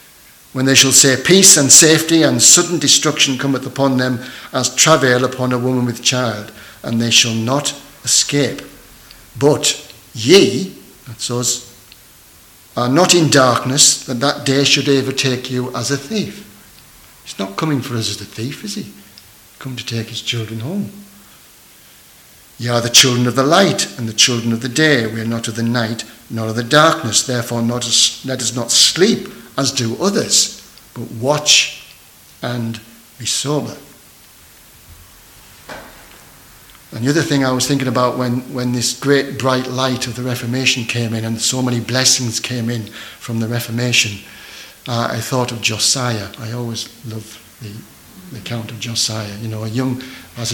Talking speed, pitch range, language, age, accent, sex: 165 wpm, 115-135 Hz, English, 60-79, British, male